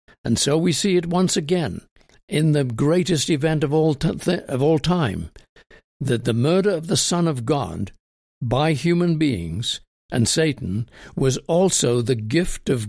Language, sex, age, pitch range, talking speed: English, male, 60-79, 115-160 Hz, 165 wpm